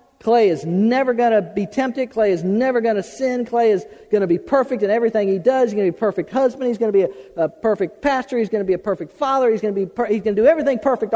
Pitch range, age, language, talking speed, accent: 195-265 Hz, 50-69, English, 300 wpm, American